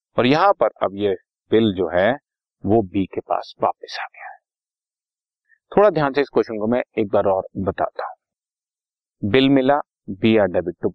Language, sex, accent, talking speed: Hindi, male, native, 185 wpm